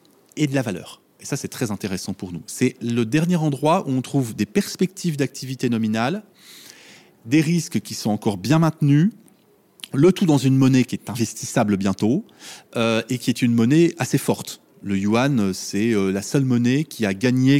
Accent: French